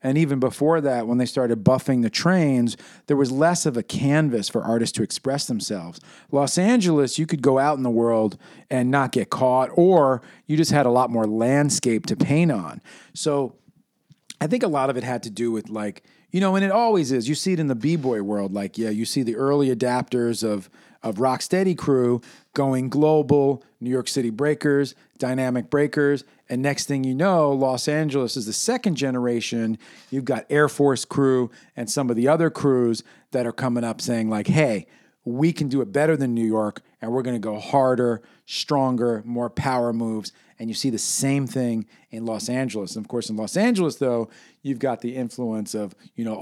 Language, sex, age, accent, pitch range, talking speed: English, male, 40-59, American, 120-150 Hz, 205 wpm